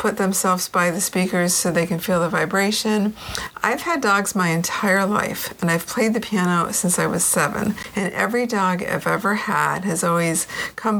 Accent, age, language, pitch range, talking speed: American, 50-69, English, 170-210 Hz, 190 wpm